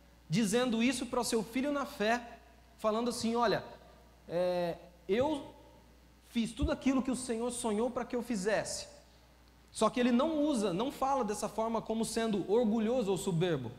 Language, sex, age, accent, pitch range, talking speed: Portuguese, male, 20-39, Brazilian, 175-235 Hz, 160 wpm